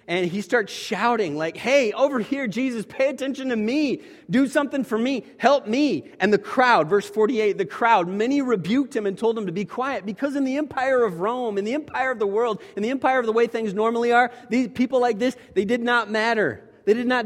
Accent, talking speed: American, 235 wpm